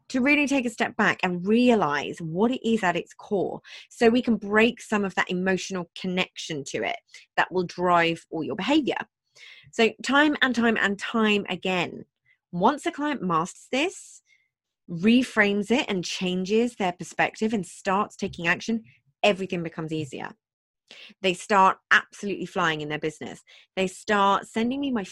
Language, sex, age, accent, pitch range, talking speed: English, female, 20-39, British, 175-225 Hz, 160 wpm